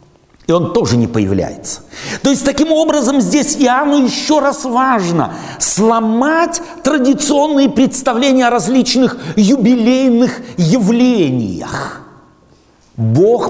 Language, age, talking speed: Russian, 60-79, 100 wpm